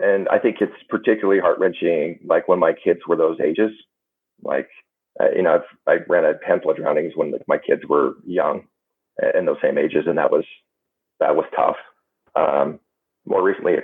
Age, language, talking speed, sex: 30-49, English, 170 wpm, male